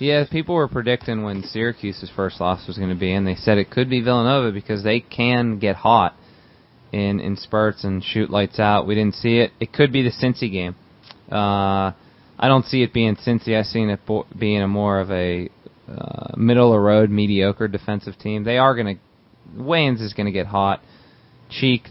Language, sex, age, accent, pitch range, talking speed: English, male, 20-39, American, 105-125 Hz, 200 wpm